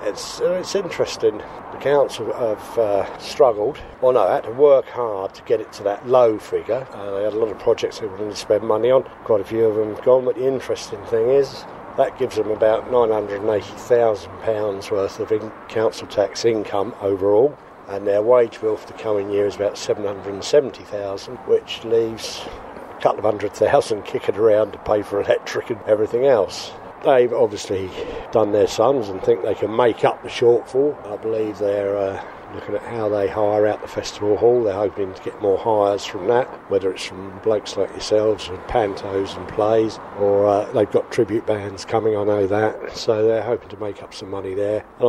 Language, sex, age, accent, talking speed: English, male, 50-69, British, 200 wpm